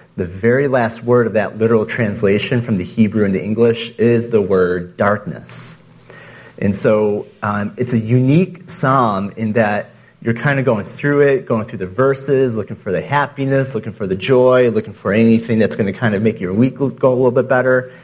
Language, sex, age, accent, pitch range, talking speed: English, male, 30-49, American, 105-130 Hz, 200 wpm